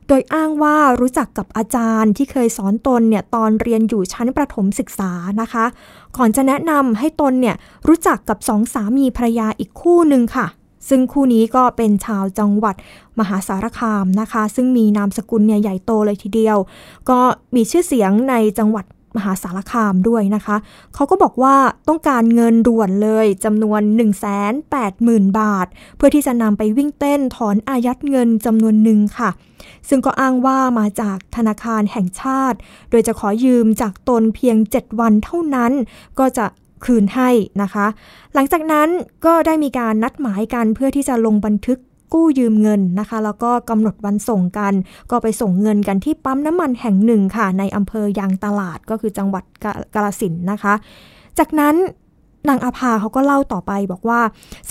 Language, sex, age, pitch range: Thai, female, 20-39, 210-260 Hz